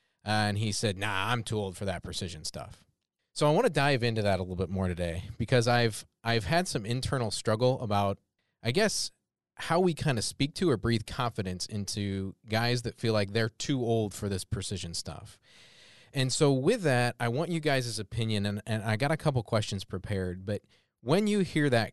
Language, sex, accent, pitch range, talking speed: English, male, American, 100-135 Hz, 210 wpm